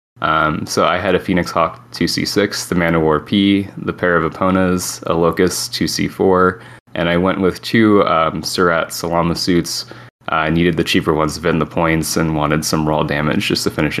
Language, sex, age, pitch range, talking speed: English, male, 20-39, 80-105 Hz, 200 wpm